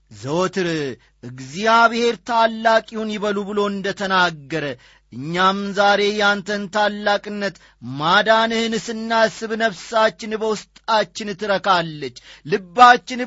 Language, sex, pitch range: Amharic, male, 165-220 Hz